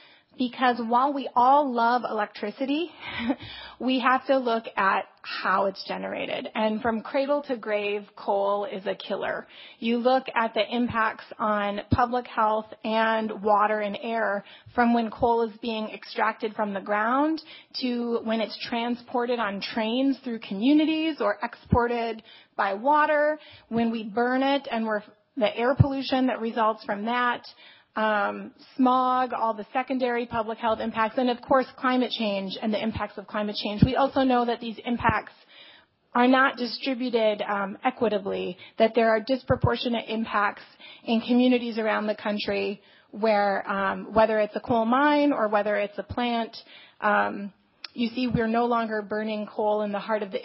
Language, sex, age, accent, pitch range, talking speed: English, female, 30-49, American, 215-255 Hz, 160 wpm